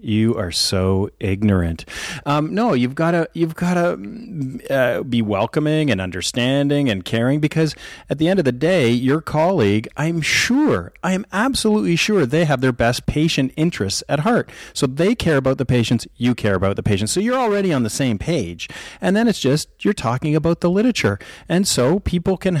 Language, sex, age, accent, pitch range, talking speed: English, male, 40-59, American, 115-165 Hz, 190 wpm